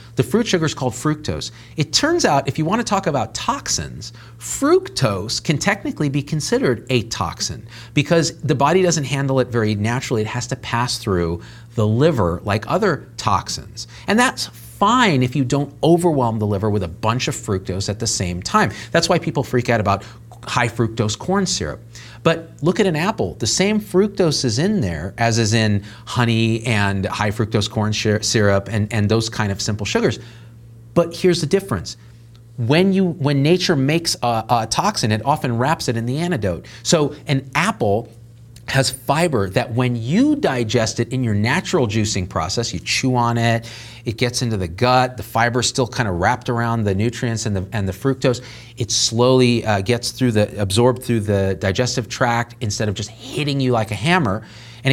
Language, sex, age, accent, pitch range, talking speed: English, male, 40-59, American, 110-140 Hz, 185 wpm